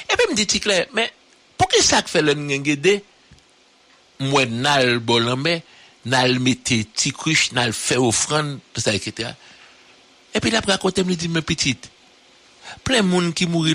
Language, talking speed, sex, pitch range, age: English, 155 wpm, male, 125-175 Hz, 60-79